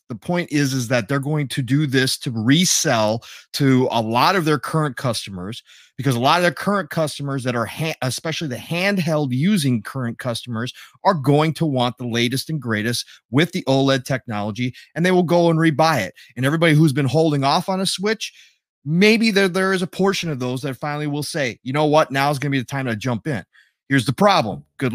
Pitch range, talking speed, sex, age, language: 120-155 Hz, 215 wpm, male, 30-49, English